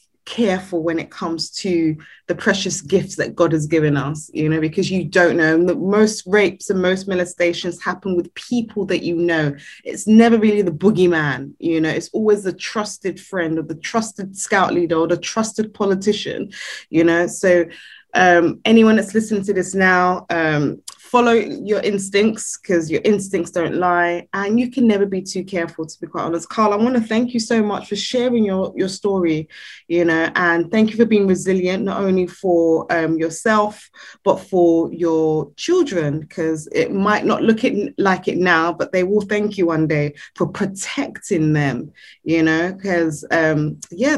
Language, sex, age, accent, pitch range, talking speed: English, female, 20-39, British, 165-210 Hz, 185 wpm